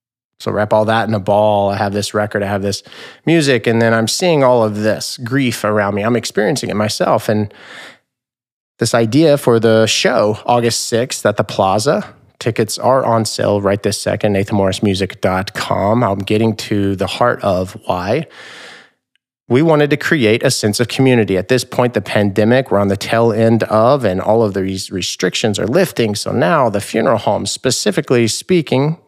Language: English